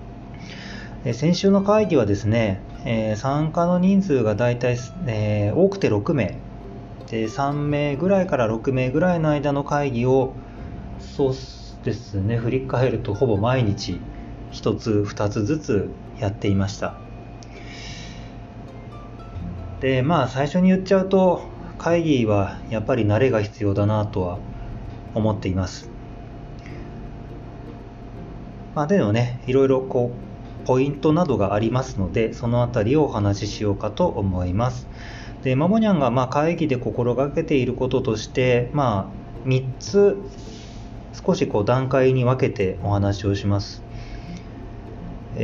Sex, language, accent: male, Japanese, native